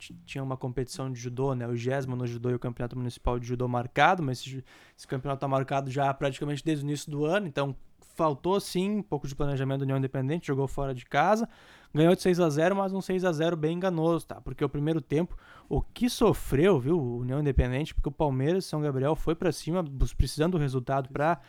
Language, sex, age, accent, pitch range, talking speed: Portuguese, male, 20-39, Brazilian, 135-185 Hz, 215 wpm